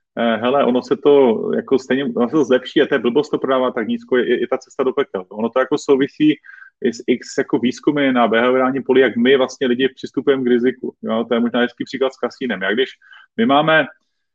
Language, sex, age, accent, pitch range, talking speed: Czech, male, 30-49, native, 125-150 Hz, 225 wpm